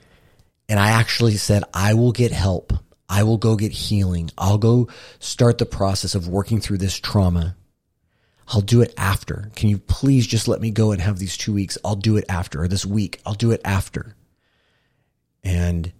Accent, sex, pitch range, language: American, male, 90-115 Hz, English